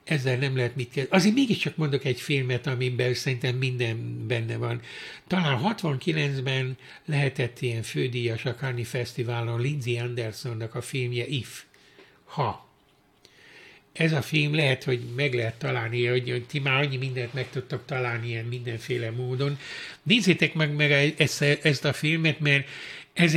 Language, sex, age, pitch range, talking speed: Hungarian, male, 60-79, 120-150 Hz, 140 wpm